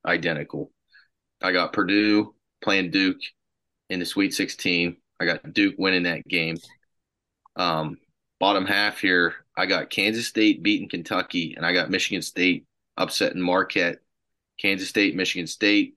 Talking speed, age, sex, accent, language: 140 wpm, 20-39, male, American, English